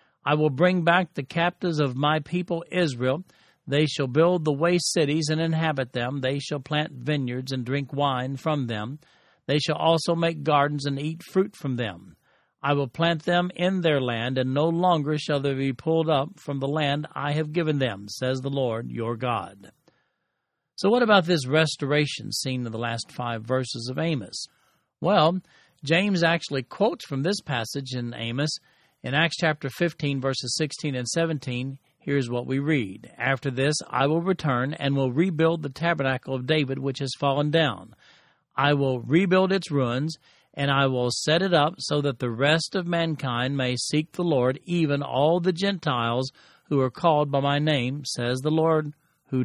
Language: English